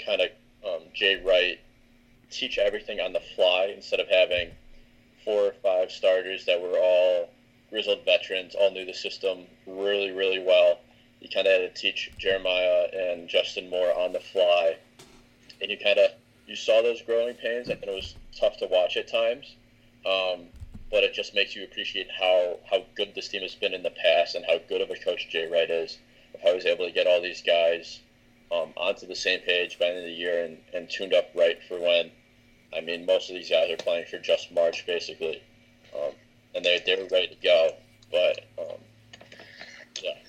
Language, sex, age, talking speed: English, male, 20-39, 200 wpm